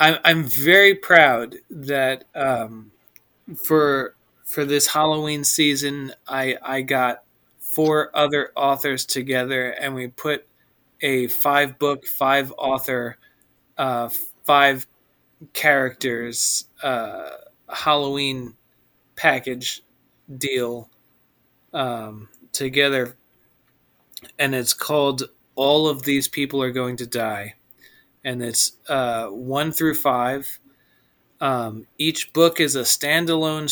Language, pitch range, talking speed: English, 125-145 Hz, 100 wpm